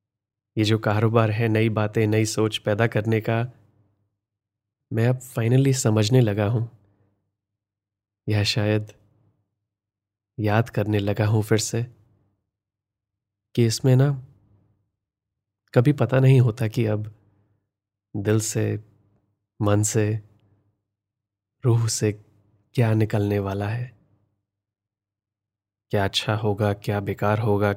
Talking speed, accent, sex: 105 wpm, native, male